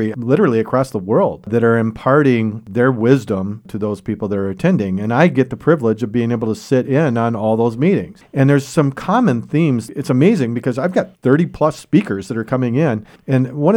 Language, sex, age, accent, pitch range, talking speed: English, male, 40-59, American, 105-140 Hz, 215 wpm